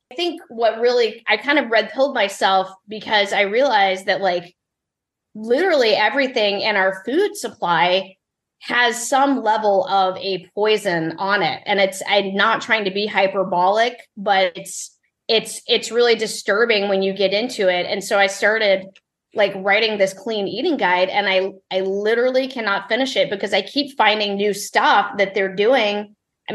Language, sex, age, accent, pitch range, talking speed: English, female, 20-39, American, 190-230 Hz, 165 wpm